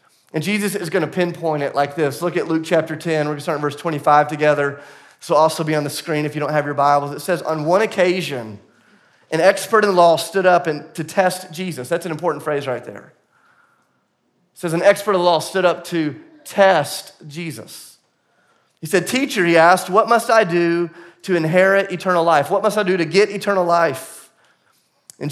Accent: American